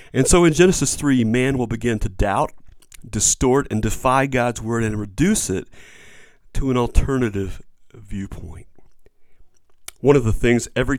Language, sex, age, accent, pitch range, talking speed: English, male, 40-59, American, 105-135 Hz, 145 wpm